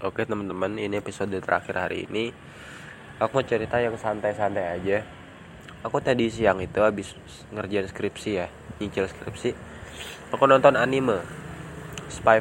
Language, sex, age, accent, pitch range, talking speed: Indonesian, male, 20-39, native, 95-115 Hz, 130 wpm